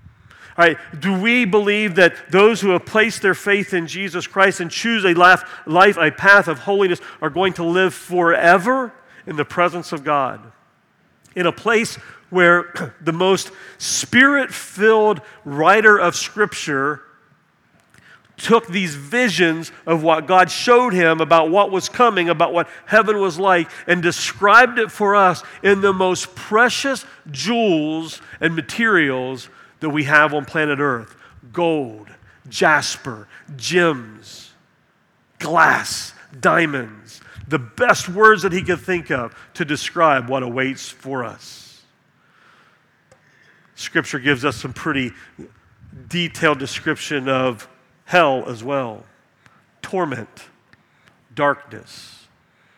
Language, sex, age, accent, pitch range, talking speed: English, male, 40-59, American, 145-195 Hz, 125 wpm